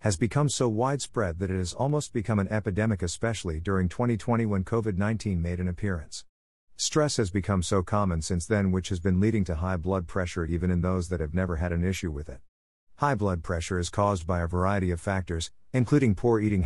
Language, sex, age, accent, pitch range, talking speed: English, male, 50-69, American, 85-110 Hz, 210 wpm